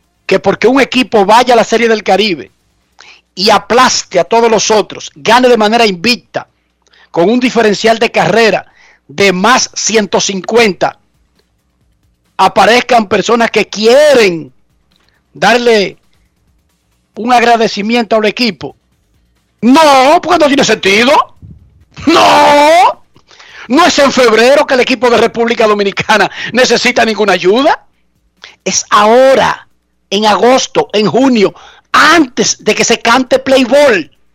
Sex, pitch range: male, 185-240 Hz